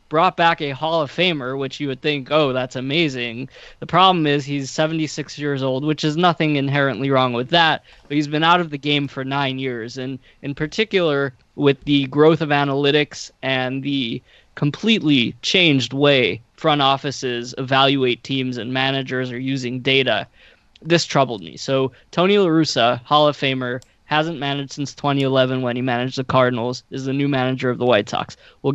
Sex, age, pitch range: male, 20-39, 130-150 Hz